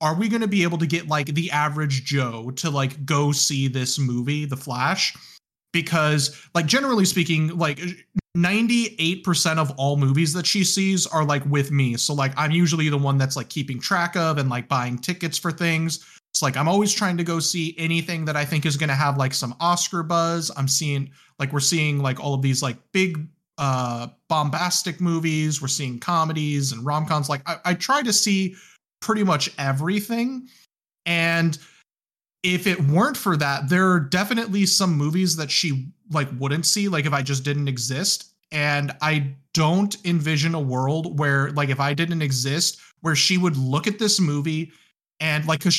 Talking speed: 190 wpm